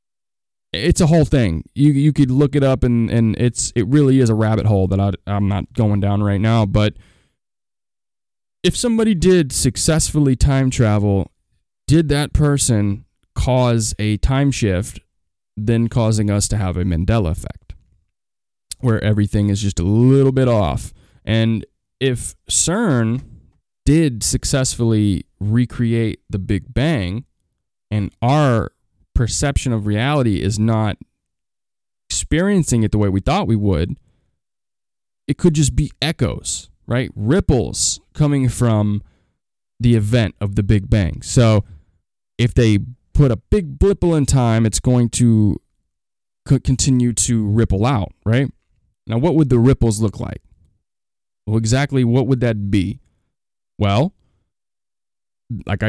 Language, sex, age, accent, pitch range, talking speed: English, male, 20-39, American, 100-130 Hz, 135 wpm